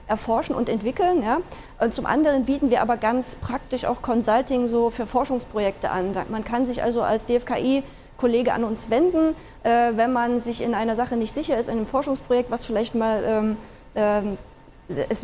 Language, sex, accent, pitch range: German, female, German, 225-255 Hz